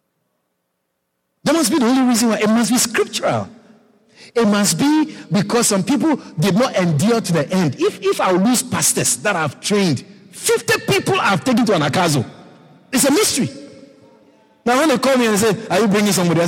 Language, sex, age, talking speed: English, male, 60-79, 195 wpm